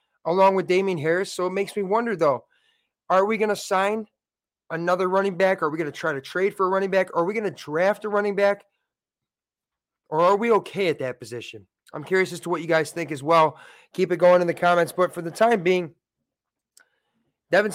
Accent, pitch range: American, 170-200 Hz